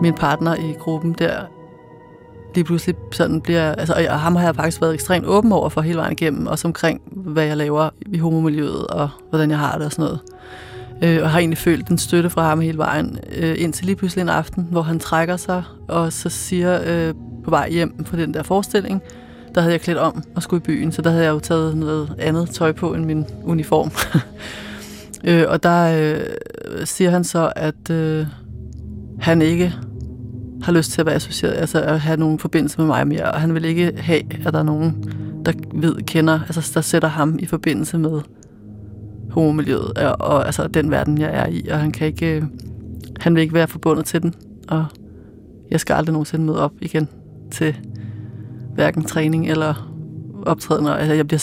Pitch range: 150-165 Hz